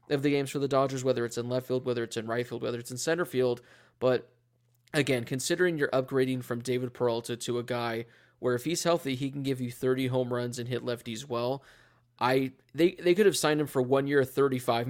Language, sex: English, male